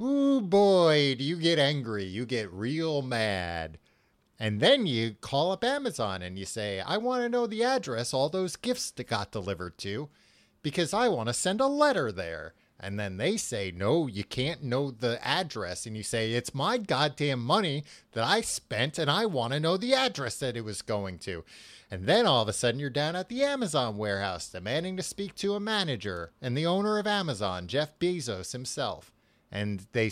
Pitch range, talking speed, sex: 110-170 Hz, 200 wpm, male